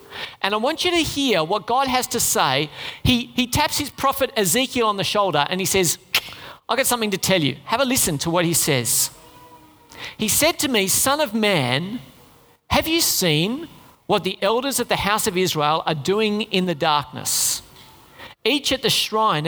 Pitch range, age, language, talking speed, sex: 155-250 Hz, 40-59, English, 195 wpm, male